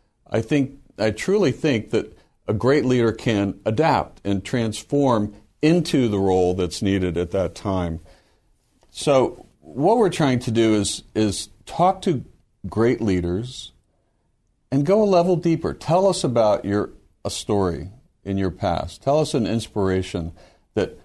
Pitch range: 90-120 Hz